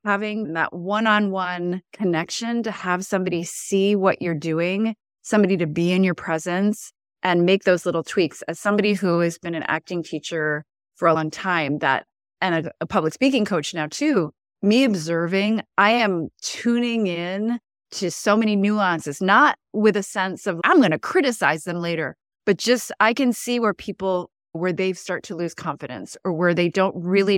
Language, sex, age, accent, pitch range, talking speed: English, female, 30-49, American, 170-210 Hz, 180 wpm